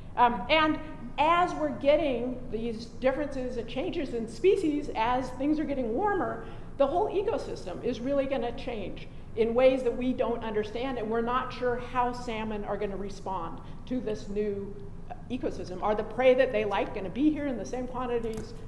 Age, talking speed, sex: 50-69, 190 wpm, female